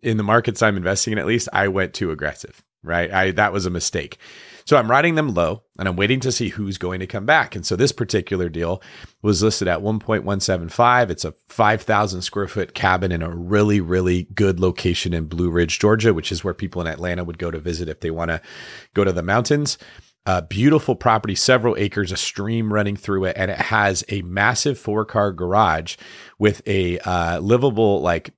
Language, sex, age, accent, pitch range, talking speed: English, male, 30-49, American, 90-110 Hz, 205 wpm